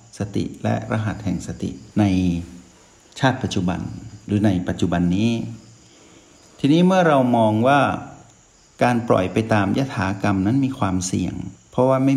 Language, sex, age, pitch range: Thai, male, 60-79, 95-115 Hz